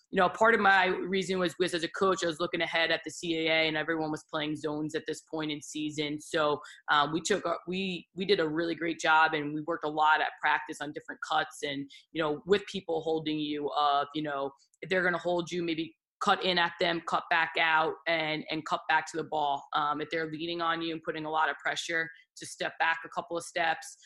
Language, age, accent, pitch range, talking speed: English, 20-39, American, 150-165 Hz, 245 wpm